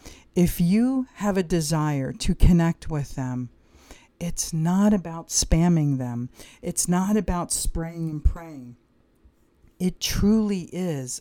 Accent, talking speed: American, 125 wpm